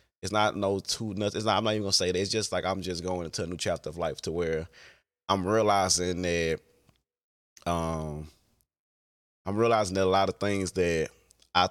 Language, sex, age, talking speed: English, male, 20-39, 215 wpm